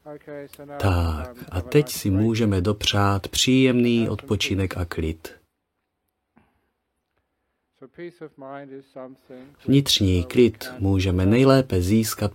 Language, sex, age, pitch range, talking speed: Czech, male, 30-49, 90-130 Hz, 75 wpm